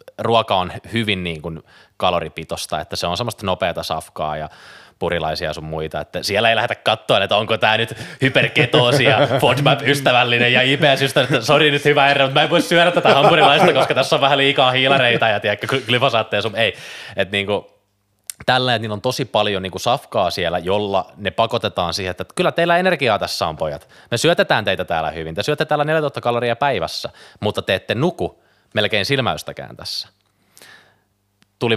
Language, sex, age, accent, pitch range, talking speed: Finnish, male, 20-39, native, 90-125 Hz, 175 wpm